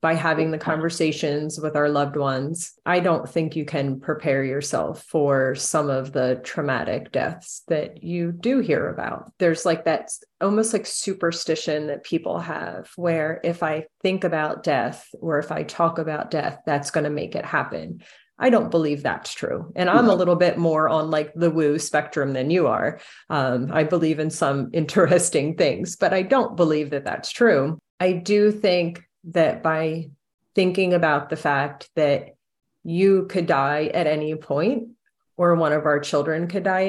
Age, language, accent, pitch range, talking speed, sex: 30-49, English, American, 155-180 Hz, 175 wpm, female